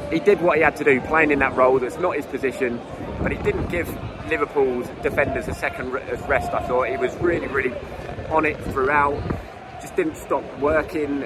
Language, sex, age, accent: English, male, 20-39, British